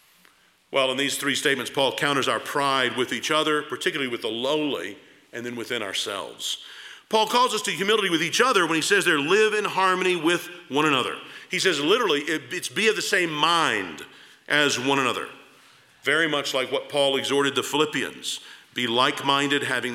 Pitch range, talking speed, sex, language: 130-185 Hz, 185 wpm, male, English